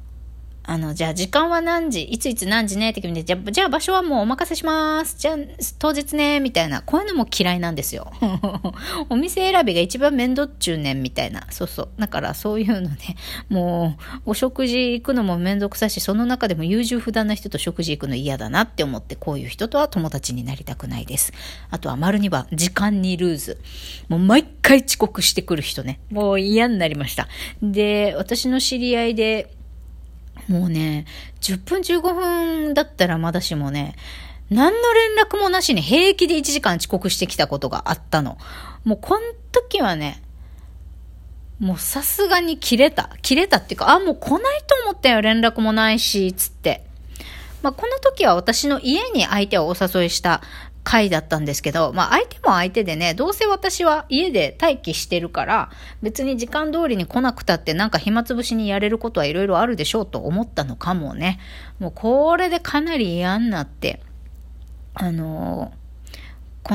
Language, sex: Japanese, female